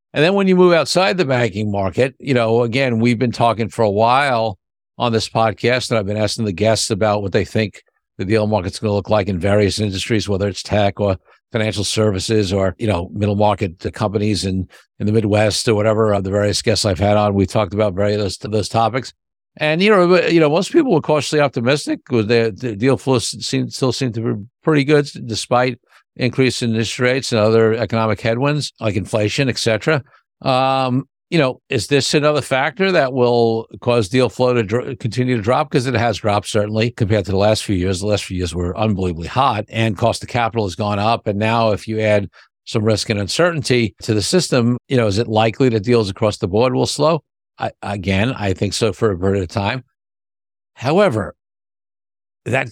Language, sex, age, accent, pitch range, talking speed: English, male, 60-79, American, 105-130 Hz, 205 wpm